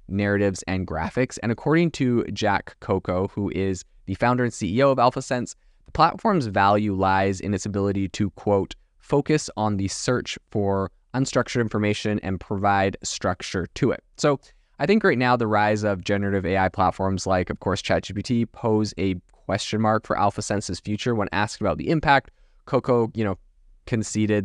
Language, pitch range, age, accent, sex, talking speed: English, 95-120 Hz, 20-39, American, male, 165 wpm